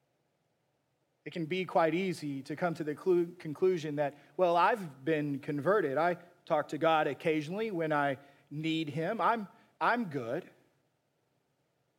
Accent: American